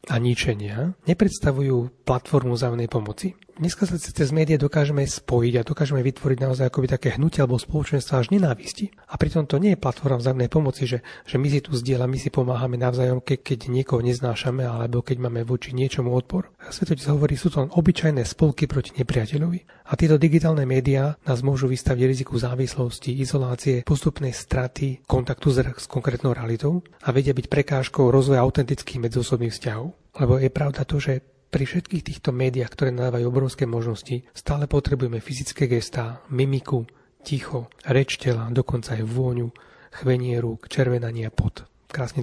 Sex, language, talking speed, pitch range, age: male, Slovak, 165 wpm, 125-145 Hz, 30-49